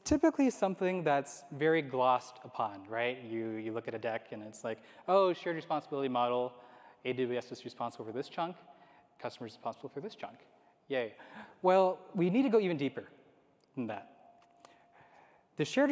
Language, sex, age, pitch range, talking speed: English, male, 20-39, 125-195 Hz, 160 wpm